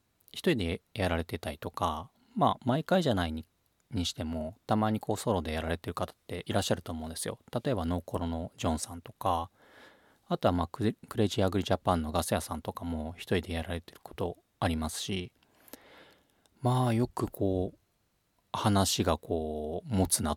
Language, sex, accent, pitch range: Japanese, male, native, 80-110 Hz